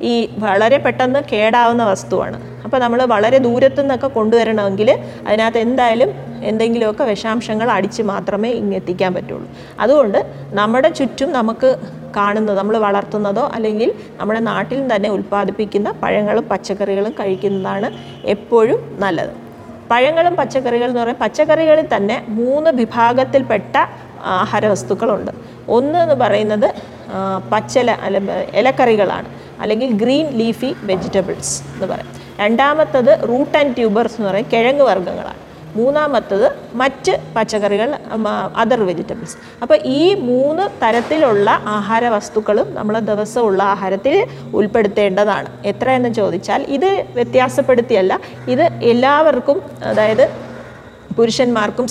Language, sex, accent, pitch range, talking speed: Malayalam, female, native, 205-260 Hz, 100 wpm